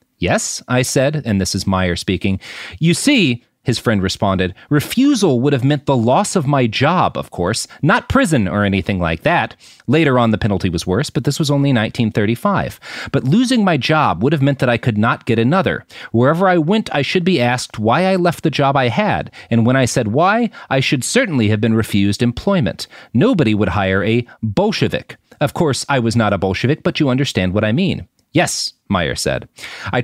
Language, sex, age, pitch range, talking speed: English, male, 30-49, 110-155 Hz, 205 wpm